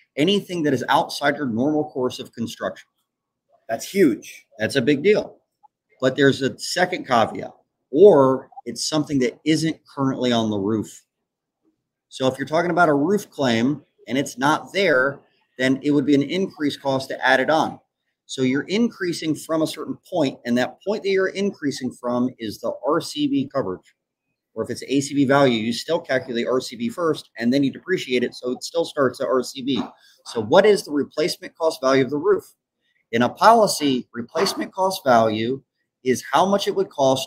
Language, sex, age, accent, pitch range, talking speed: English, male, 30-49, American, 130-185 Hz, 180 wpm